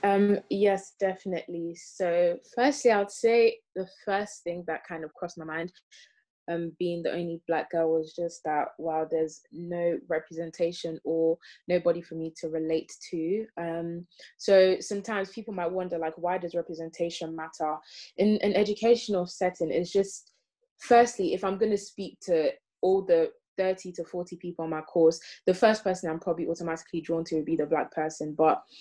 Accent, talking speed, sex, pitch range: British, 175 wpm, female, 160-195 Hz